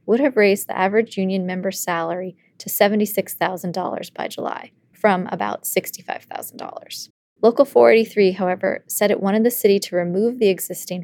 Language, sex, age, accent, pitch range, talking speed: English, female, 20-39, American, 185-220 Hz, 145 wpm